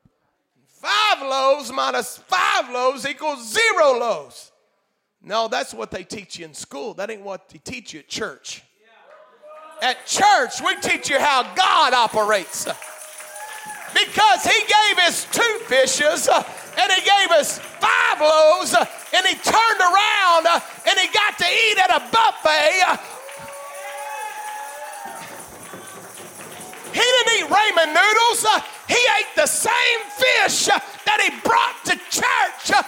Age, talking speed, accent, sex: 40-59, 130 wpm, American, male